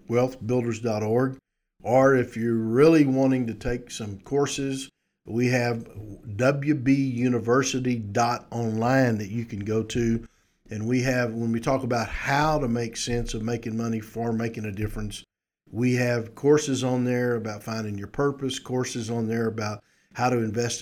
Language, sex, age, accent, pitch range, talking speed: English, male, 50-69, American, 110-125 Hz, 150 wpm